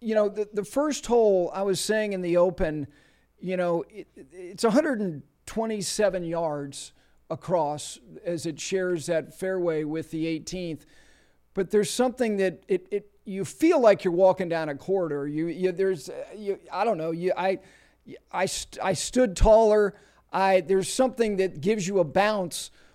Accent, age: American, 40-59